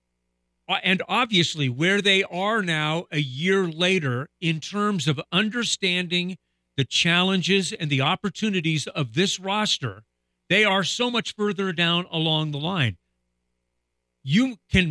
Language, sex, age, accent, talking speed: English, male, 50-69, American, 130 wpm